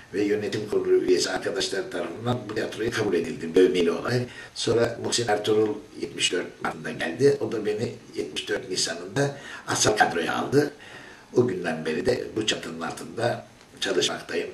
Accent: native